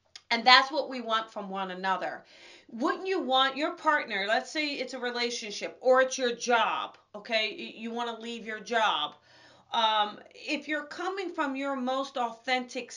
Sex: female